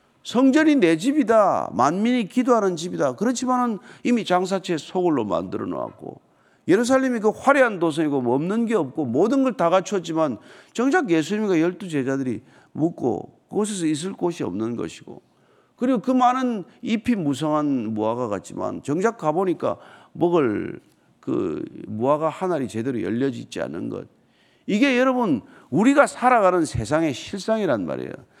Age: 50-69